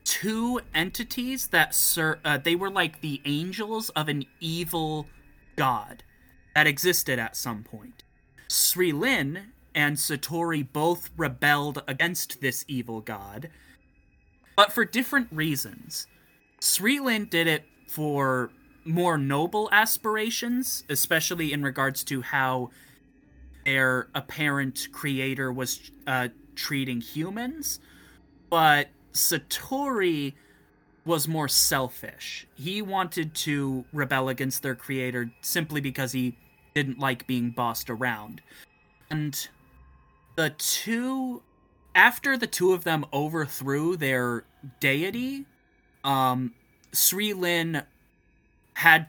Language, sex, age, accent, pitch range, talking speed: English, male, 20-39, American, 130-170 Hz, 110 wpm